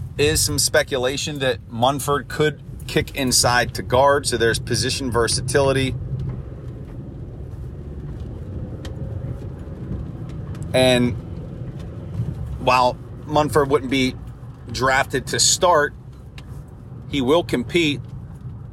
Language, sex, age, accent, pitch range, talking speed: English, male, 40-59, American, 120-140 Hz, 80 wpm